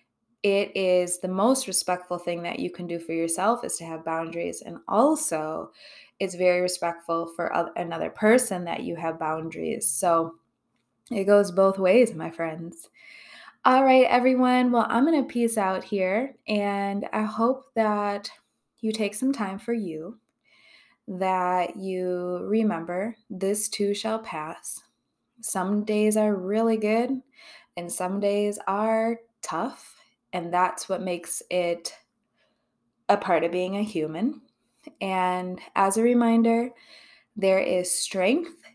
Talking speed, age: 140 wpm, 20-39